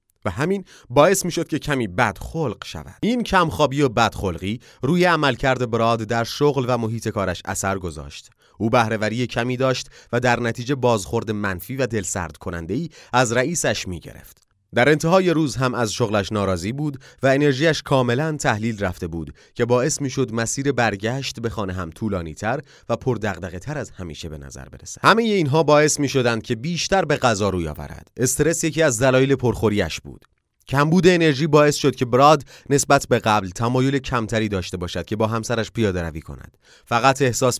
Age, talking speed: 30-49, 170 wpm